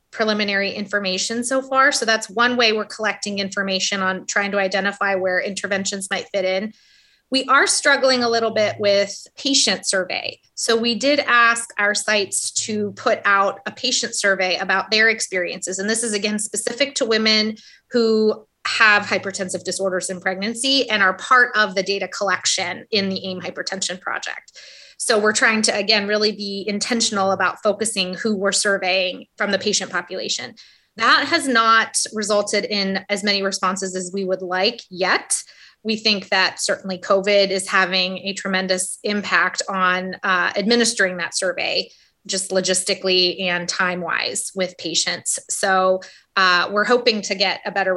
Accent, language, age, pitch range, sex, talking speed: American, English, 20-39, 190-220 Hz, female, 160 wpm